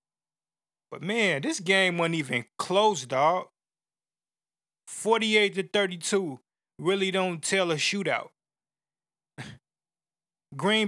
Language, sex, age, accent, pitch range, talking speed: English, male, 20-39, American, 160-195 Hz, 85 wpm